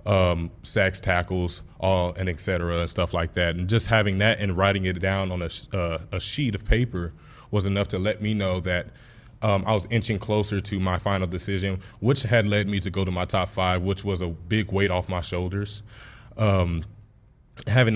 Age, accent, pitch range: 20-39, American, 90-110 Hz